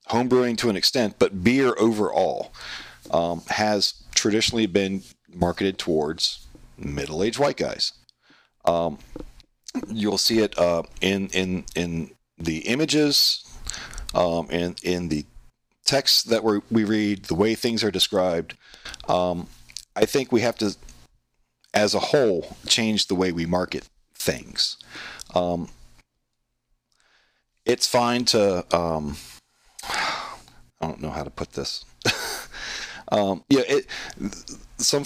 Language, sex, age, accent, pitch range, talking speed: English, male, 40-59, American, 80-110 Hz, 125 wpm